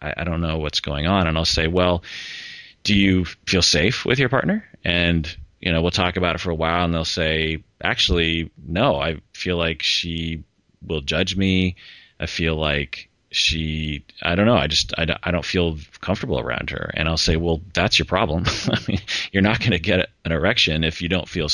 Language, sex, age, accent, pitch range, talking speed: English, male, 30-49, American, 75-90 Hz, 205 wpm